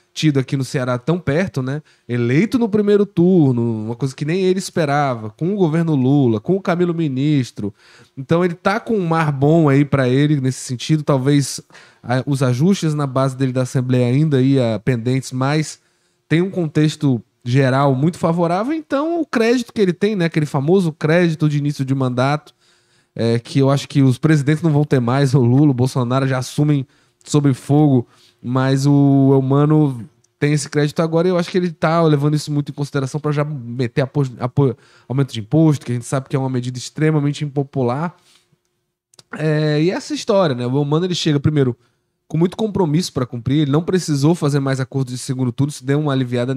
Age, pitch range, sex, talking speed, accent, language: 10-29, 130-165 Hz, male, 195 wpm, Brazilian, Portuguese